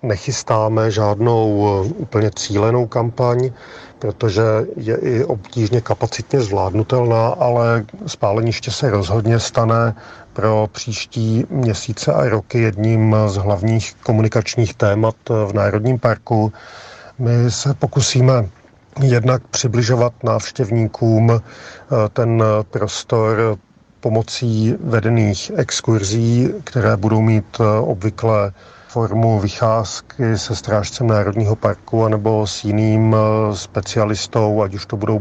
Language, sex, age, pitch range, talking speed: Czech, male, 40-59, 105-115 Hz, 100 wpm